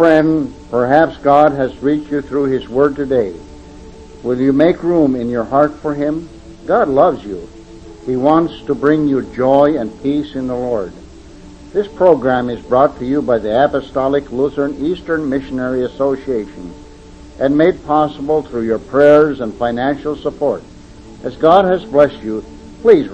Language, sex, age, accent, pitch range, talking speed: English, male, 60-79, American, 120-155 Hz, 160 wpm